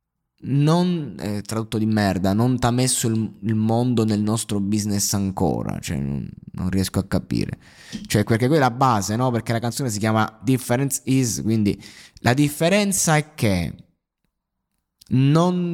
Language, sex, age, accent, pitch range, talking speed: Italian, male, 20-39, native, 95-125 Hz, 160 wpm